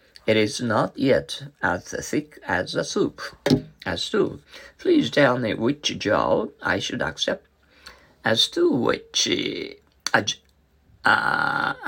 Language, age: Japanese, 50-69